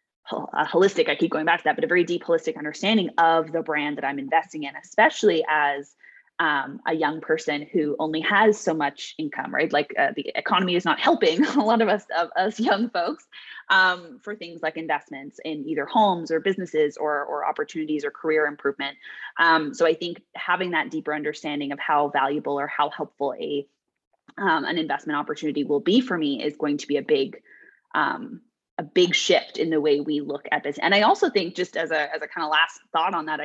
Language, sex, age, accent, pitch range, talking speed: English, female, 20-39, American, 150-215 Hz, 210 wpm